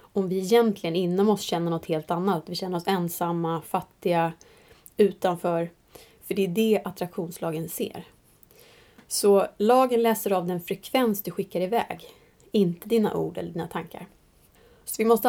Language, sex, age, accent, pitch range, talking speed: English, female, 20-39, Swedish, 175-225 Hz, 155 wpm